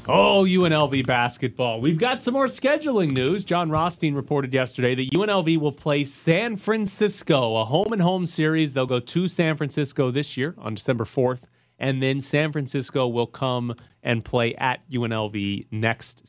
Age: 30-49